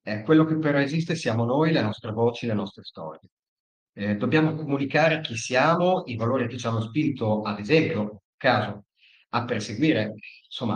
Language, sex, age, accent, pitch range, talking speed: Italian, male, 40-59, native, 105-130 Hz, 165 wpm